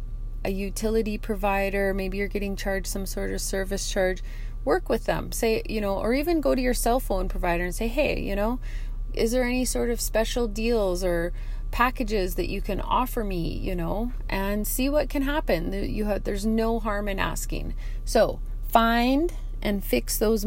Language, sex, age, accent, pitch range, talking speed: English, female, 30-49, American, 175-230 Hz, 190 wpm